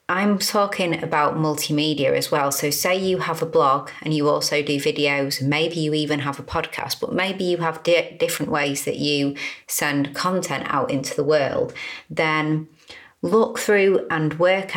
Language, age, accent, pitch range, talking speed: English, 30-49, British, 145-185 Hz, 175 wpm